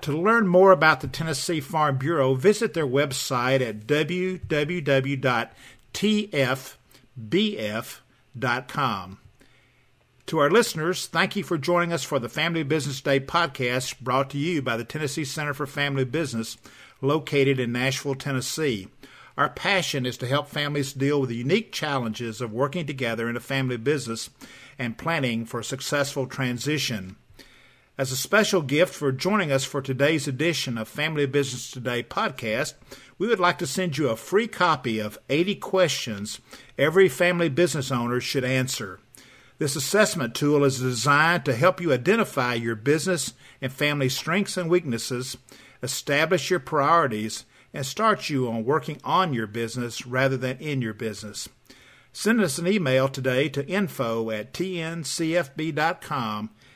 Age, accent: 50-69, American